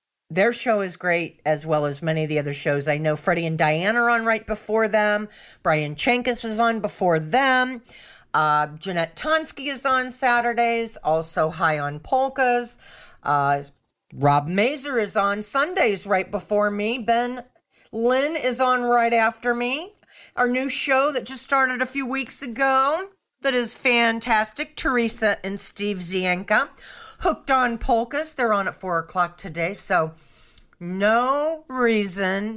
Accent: American